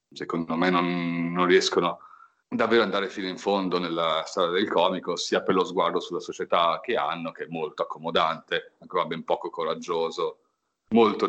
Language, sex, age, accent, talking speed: Italian, male, 40-59, native, 170 wpm